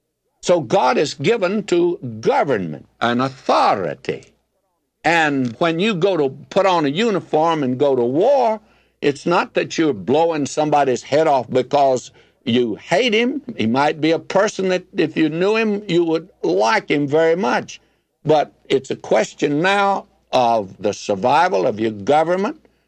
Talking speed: 155 wpm